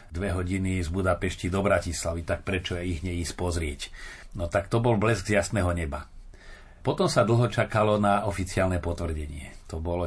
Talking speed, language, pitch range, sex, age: 165 wpm, Slovak, 90-105 Hz, male, 40-59